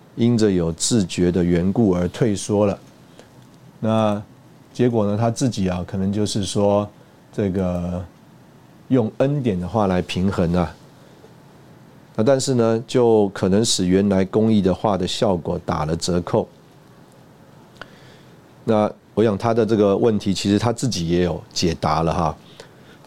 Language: Chinese